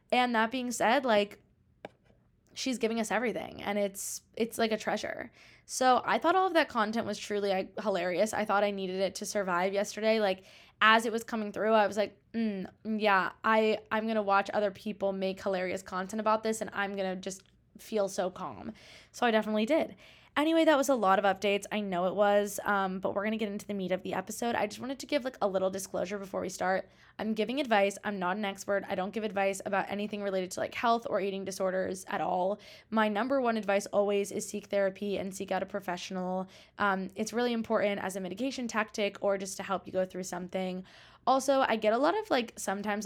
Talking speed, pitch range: 225 wpm, 195-220 Hz